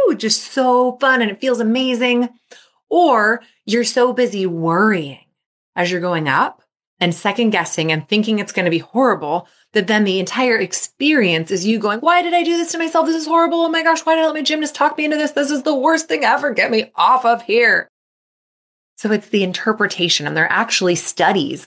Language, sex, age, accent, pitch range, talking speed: English, female, 20-39, American, 165-245 Hz, 215 wpm